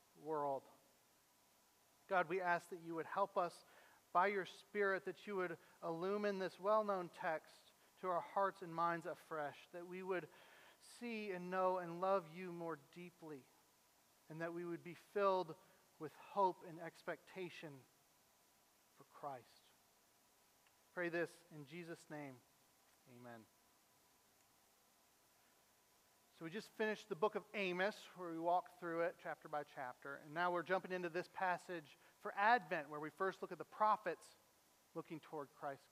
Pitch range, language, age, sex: 155-190 Hz, English, 40-59, male